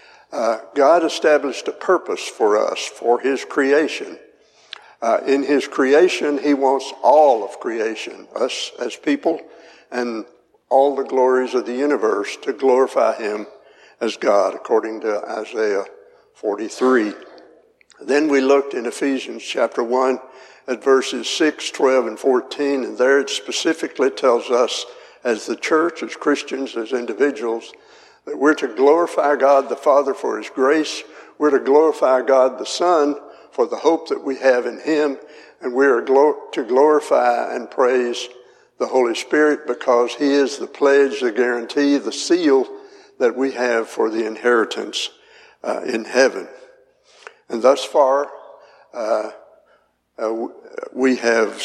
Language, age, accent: English, 60-79, American